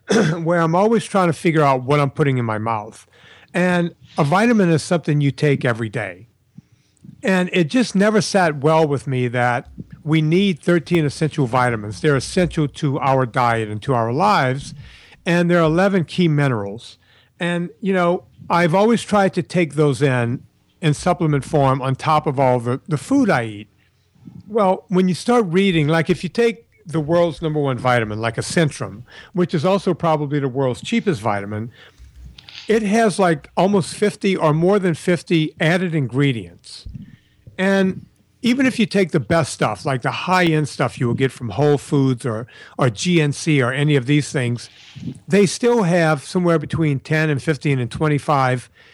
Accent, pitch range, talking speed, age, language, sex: American, 130-180 Hz, 180 wpm, 60-79, English, male